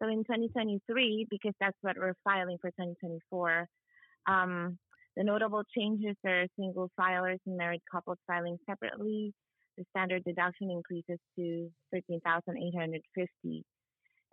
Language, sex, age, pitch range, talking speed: English, female, 30-49, 175-210 Hz, 115 wpm